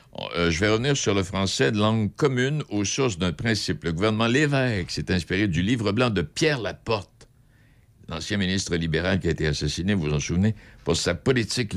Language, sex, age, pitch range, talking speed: French, male, 60-79, 90-115 Hz, 200 wpm